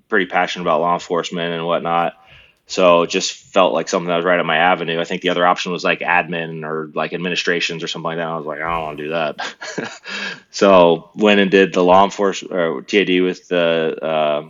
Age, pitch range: 20-39, 85-95 Hz